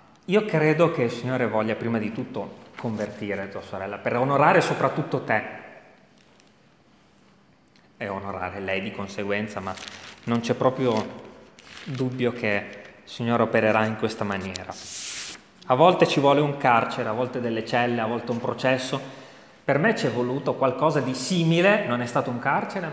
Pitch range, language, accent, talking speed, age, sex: 110-170 Hz, Italian, native, 155 wpm, 30-49, male